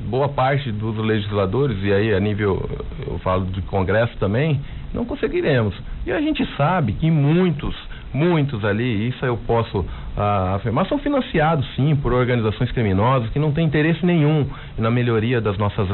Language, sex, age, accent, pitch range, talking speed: English, male, 40-59, Brazilian, 105-135 Hz, 160 wpm